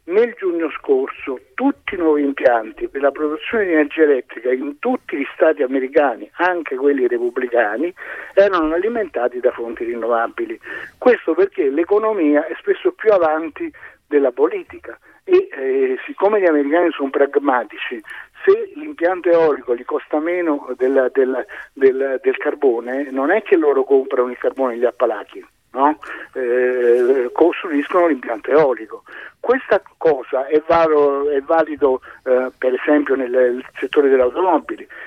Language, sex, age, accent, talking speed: Italian, male, 60-79, native, 135 wpm